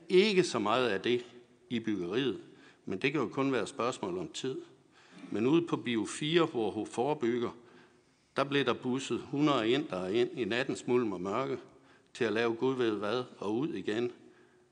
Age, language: 60-79, Danish